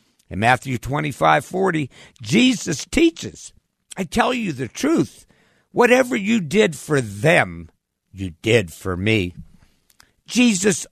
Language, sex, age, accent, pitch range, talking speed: English, male, 60-79, American, 105-160 Hz, 115 wpm